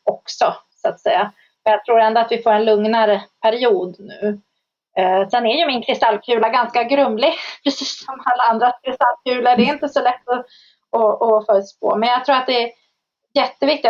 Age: 30-49